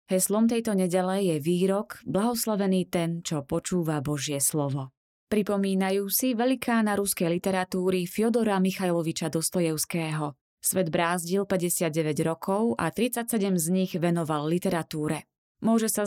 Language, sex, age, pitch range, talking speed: Slovak, female, 20-39, 165-200 Hz, 115 wpm